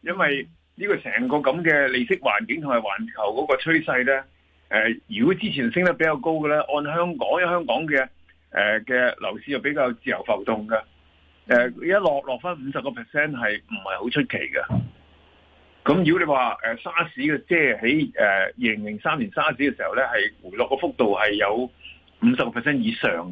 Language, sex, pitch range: Chinese, male, 110-170 Hz